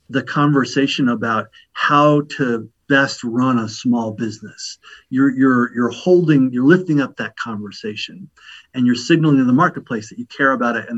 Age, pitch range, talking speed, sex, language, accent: 50-69, 125-160 Hz, 170 wpm, male, English, American